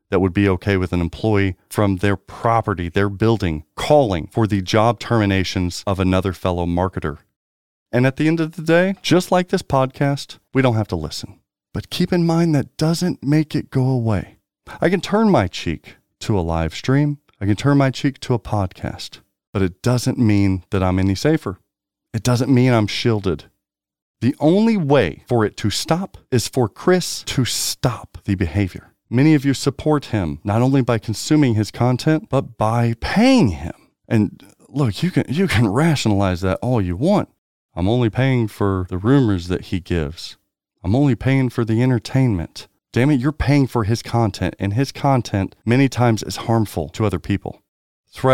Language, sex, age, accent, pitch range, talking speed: English, male, 40-59, American, 95-135 Hz, 185 wpm